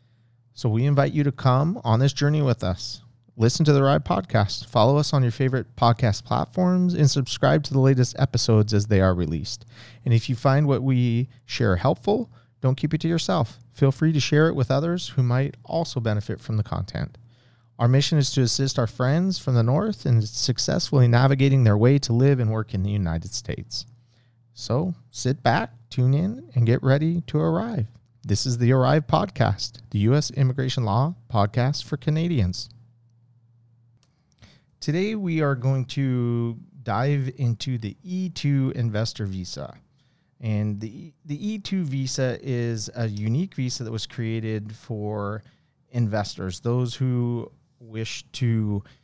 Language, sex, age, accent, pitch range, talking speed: English, male, 40-59, American, 115-145 Hz, 165 wpm